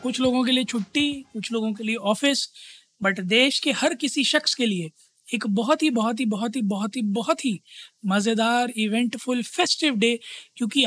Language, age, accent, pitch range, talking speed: Hindi, 20-39, native, 205-245 Hz, 190 wpm